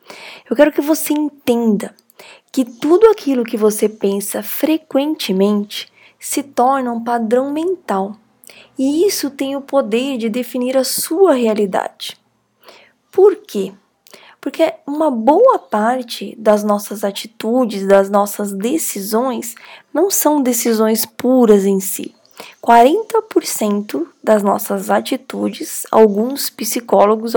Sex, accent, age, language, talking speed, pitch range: female, Brazilian, 10-29, Portuguese, 110 wpm, 225-275 Hz